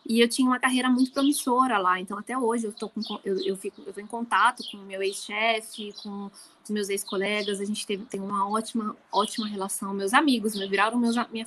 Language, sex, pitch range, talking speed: Portuguese, female, 200-255 Hz, 205 wpm